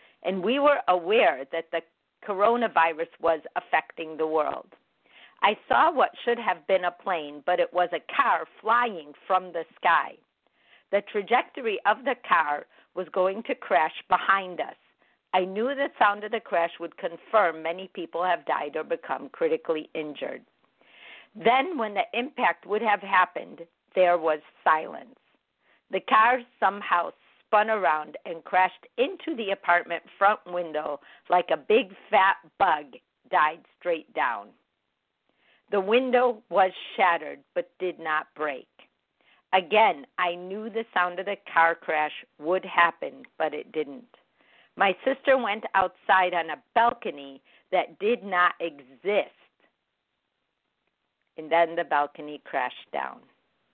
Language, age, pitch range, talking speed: English, 50-69, 165-220 Hz, 140 wpm